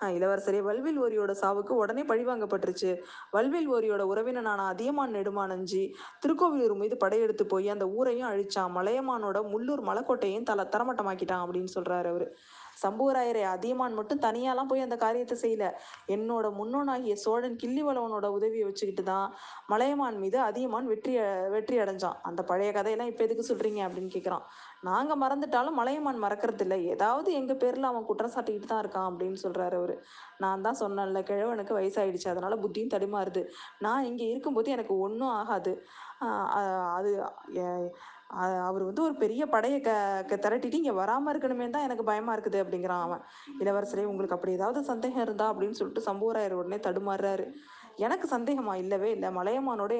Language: Tamil